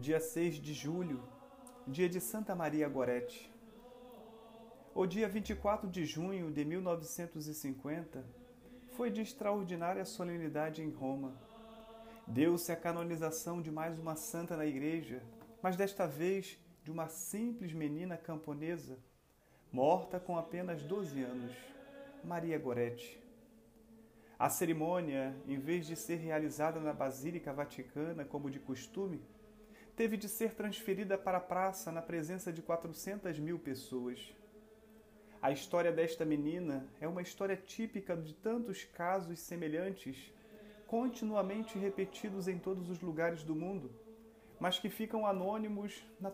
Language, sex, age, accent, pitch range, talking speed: Portuguese, male, 40-59, Brazilian, 155-210 Hz, 125 wpm